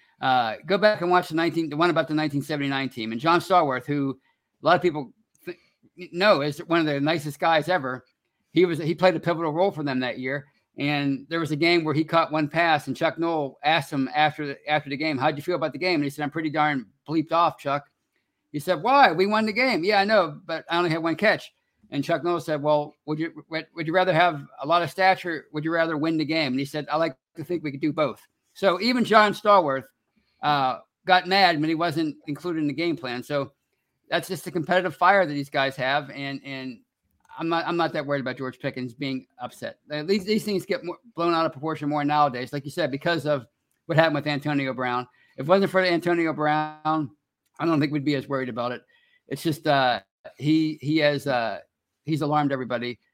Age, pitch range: 50-69, 140-170 Hz